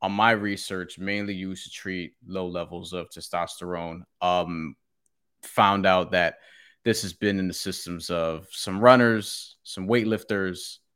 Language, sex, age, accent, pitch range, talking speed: English, male, 20-39, American, 90-110 Hz, 140 wpm